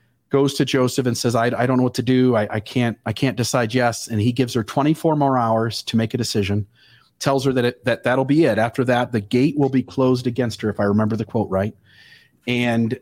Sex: male